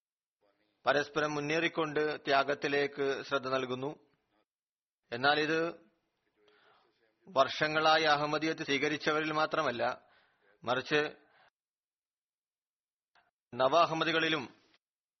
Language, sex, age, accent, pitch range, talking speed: Malayalam, male, 40-59, native, 140-160 Hz, 50 wpm